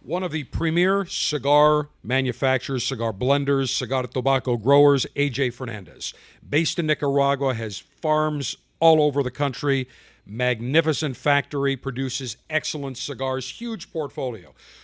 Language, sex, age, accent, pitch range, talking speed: English, male, 50-69, American, 130-165 Hz, 115 wpm